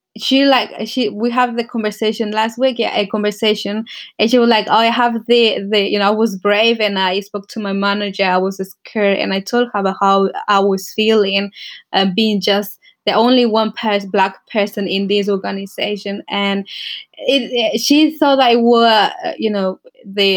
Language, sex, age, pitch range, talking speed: English, female, 20-39, 195-230 Hz, 190 wpm